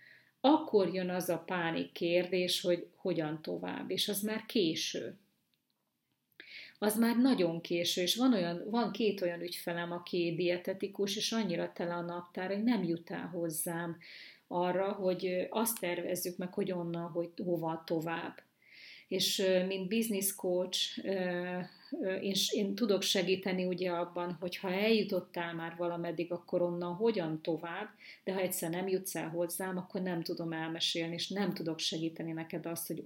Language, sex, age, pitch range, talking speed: Hungarian, female, 30-49, 170-190 Hz, 145 wpm